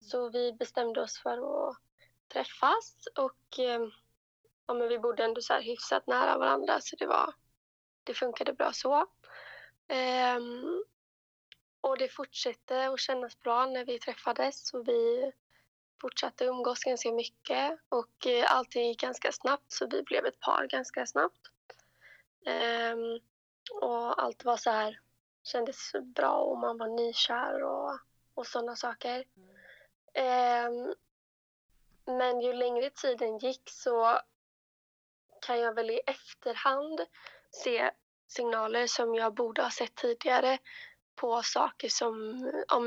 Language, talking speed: Swedish, 125 wpm